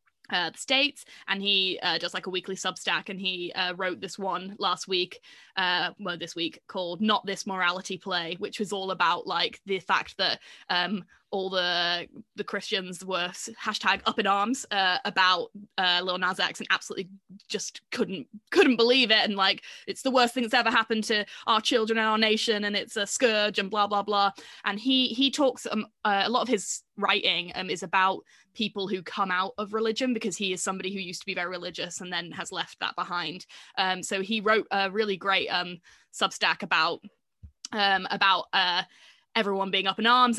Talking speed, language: 200 wpm, English